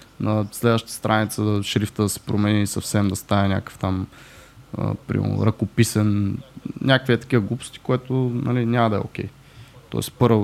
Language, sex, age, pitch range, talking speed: Bulgarian, male, 20-39, 105-130 Hz, 160 wpm